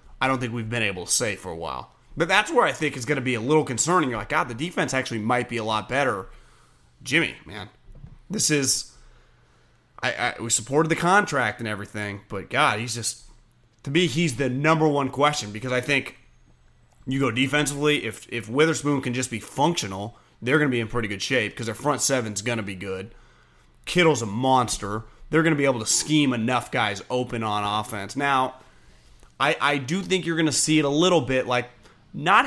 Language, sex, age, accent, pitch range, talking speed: English, male, 30-49, American, 115-150 Hz, 220 wpm